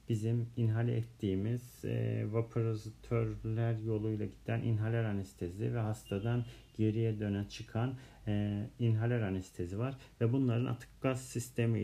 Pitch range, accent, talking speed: 115-145 Hz, native, 105 wpm